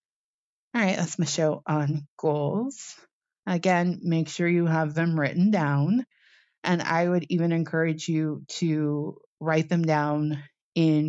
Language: English